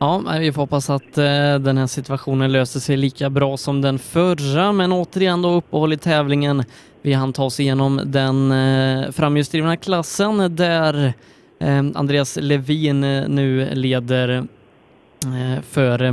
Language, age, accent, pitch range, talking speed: Swedish, 20-39, native, 130-160 Hz, 125 wpm